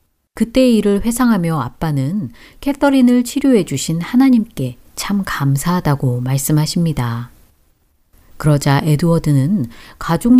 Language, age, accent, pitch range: Korean, 40-59, native, 130-200 Hz